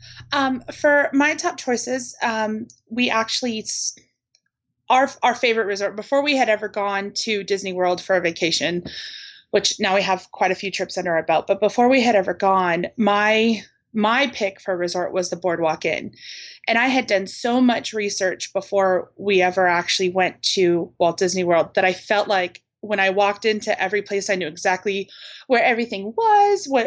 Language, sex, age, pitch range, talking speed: English, female, 30-49, 185-235 Hz, 185 wpm